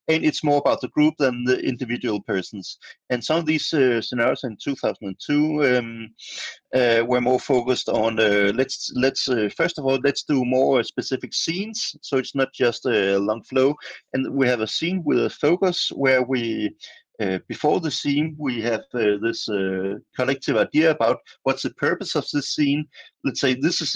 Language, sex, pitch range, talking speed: Swedish, male, 120-155 Hz, 190 wpm